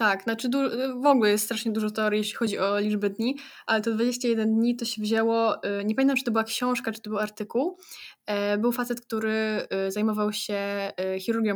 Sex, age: female, 10-29